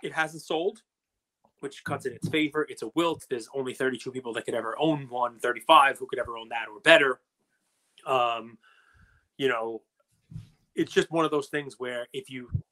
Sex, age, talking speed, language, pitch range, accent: male, 30-49, 190 wpm, English, 130-200 Hz, American